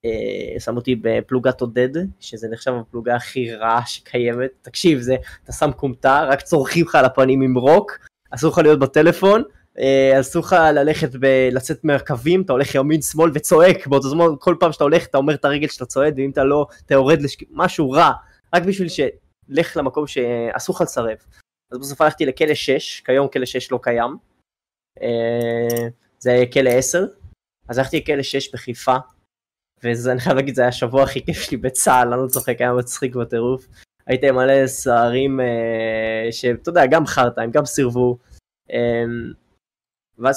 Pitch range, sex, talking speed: 120-145 Hz, male, 155 wpm